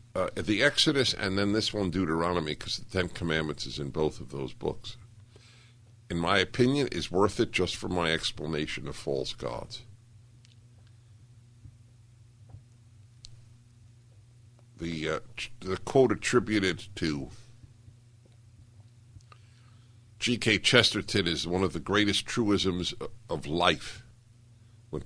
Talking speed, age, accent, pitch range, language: 115 wpm, 60-79, American, 90-115 Hz, English